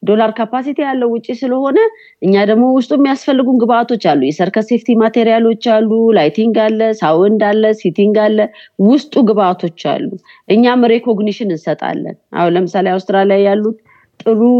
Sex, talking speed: female, 130 wpm